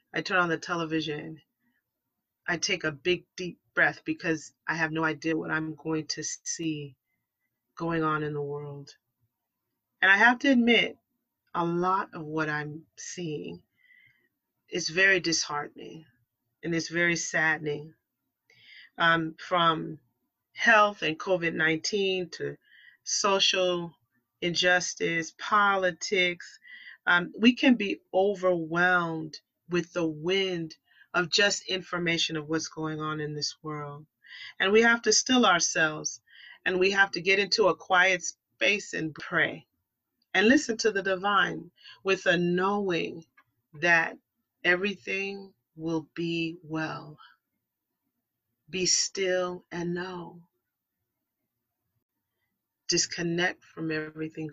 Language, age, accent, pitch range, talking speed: English, 30-49, American, 155-185 Hz, 120 wpm